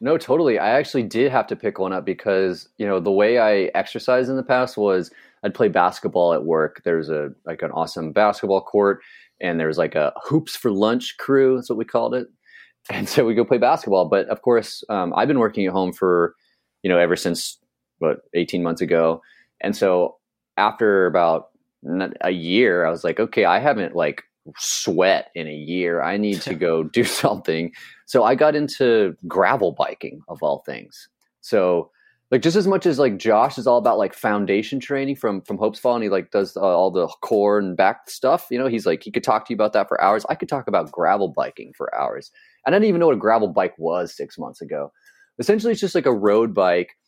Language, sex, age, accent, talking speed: English, male, 30-49, American, 220 wpm